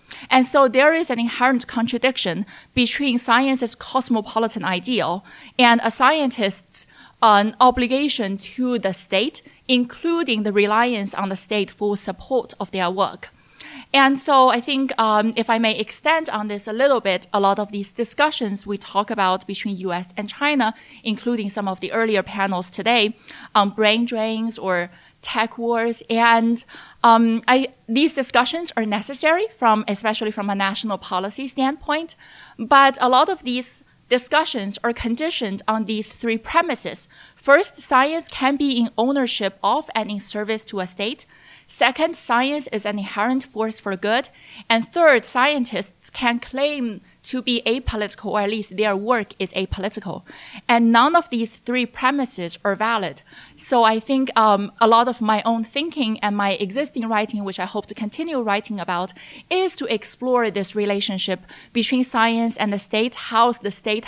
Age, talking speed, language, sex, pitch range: 20-39, 160 wpm, English, female, 205-255 Hz